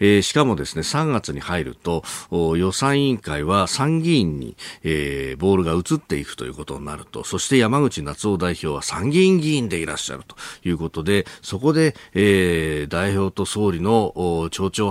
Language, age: Japanese, 40-59